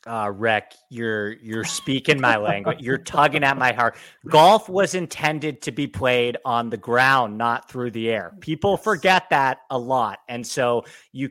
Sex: male